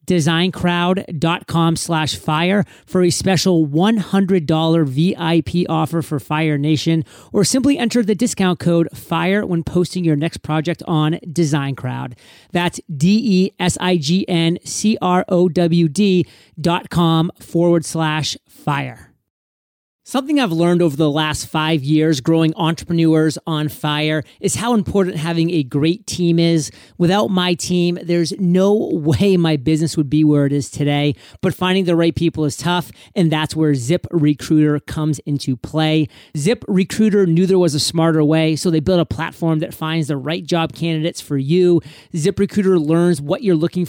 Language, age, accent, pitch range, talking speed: English, 30-49, American, 155-180 Hz, 145 wpm